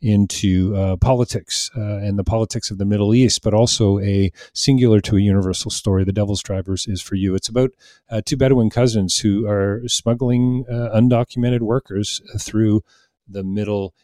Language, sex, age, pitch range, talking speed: English, male, 40-59, 95-120 Hz, 170 wpm